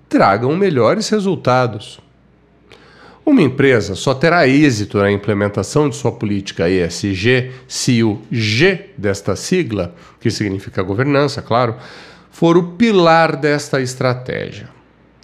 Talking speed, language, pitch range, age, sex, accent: 110 wpm, Portuguese, 105-175 Hz, 40-59, male, Brazilian